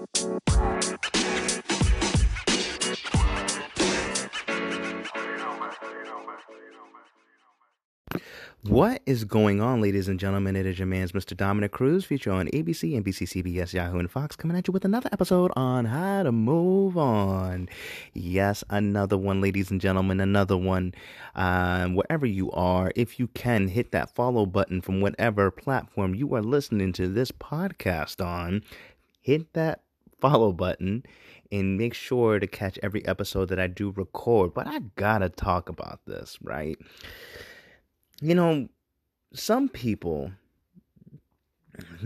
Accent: American